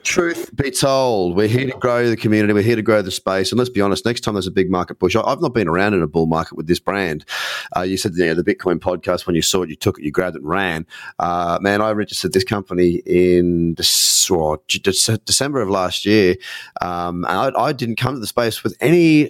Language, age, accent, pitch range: English, 30-49, Australian, 90-115 Hz